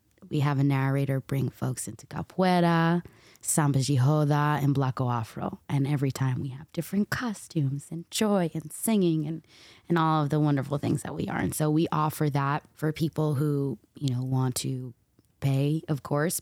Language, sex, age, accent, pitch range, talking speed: English, female, 20-39, American, 135-160 Hz, 180 wpm